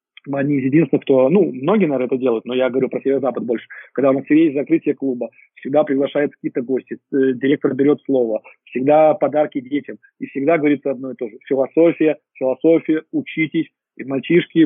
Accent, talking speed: native, 170 wpm